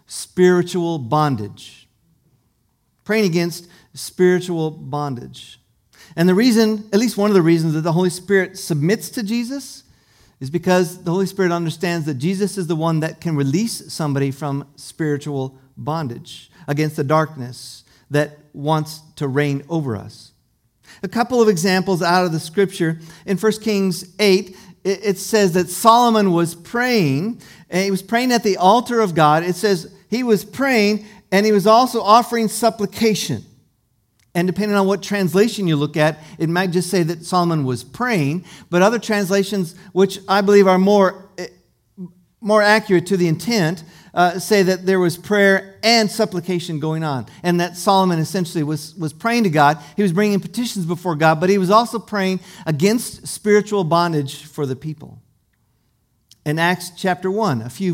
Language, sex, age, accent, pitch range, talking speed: English, male, 50-69, American, 150-200 Hz, 165 wpm